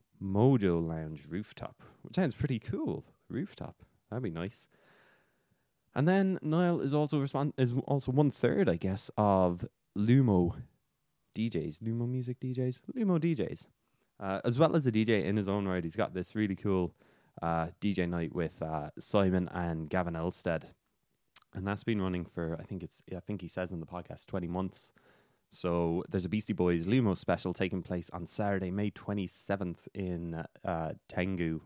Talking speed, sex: 165 wpm, male